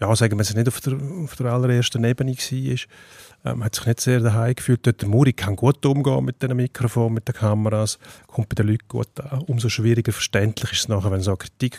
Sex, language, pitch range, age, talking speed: male, German, 110-130 Hz, 30-49, 245 wpm